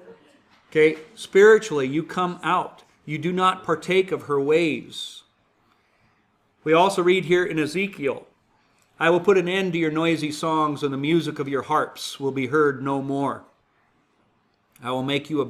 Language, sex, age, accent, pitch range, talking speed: English, male, 50-69, American, 130-170 Hz, 165 wpm